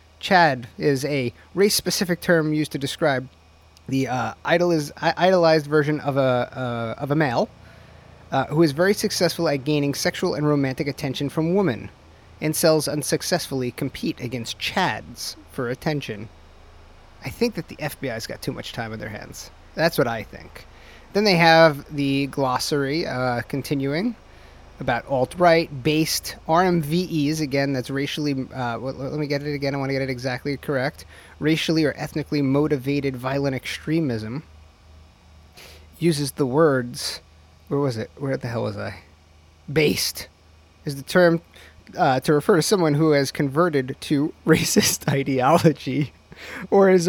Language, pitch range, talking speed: English, 120-160 Hz, 145 wpm